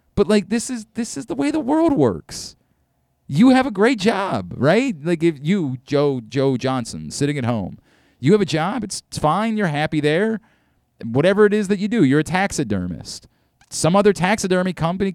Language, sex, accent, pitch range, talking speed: English, male, American, 130-210 Hz, 190 wpm